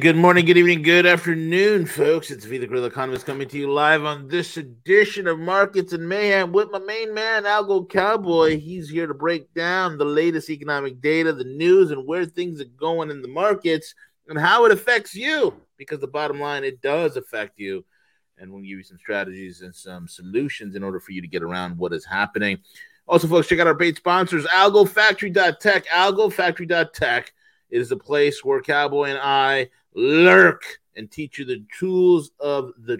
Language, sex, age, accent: English, male, 30-49, American